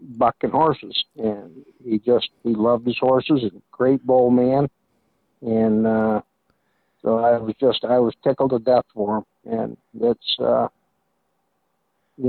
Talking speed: 145 wpm